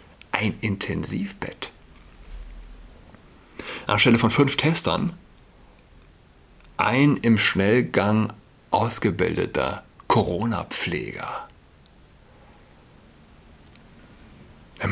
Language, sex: German, male